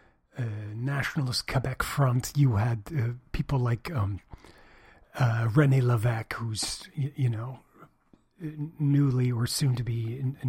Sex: male